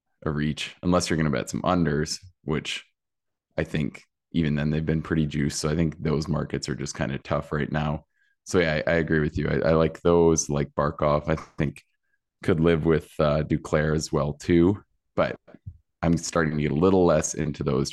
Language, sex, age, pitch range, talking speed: English, male, 20-39, 75-85 Hz, 210 wpm